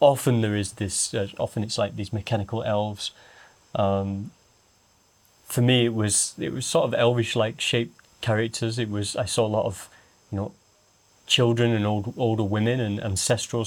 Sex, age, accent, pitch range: male, 30-49, British, 105-125 Hz